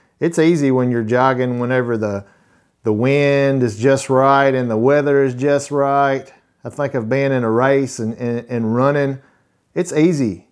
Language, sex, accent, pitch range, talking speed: English, male, American, 95-145 Hz, 175 wpm